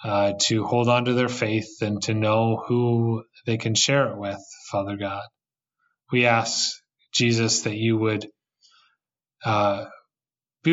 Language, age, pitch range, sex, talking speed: English, 20-39, 115-130 Hz, male, 145 wpm